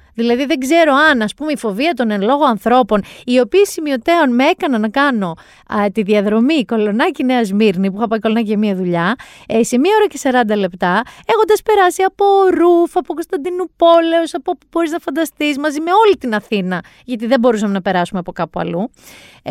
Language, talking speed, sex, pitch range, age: Greek, 190 wpm, female, 200-285 Hz, 30-49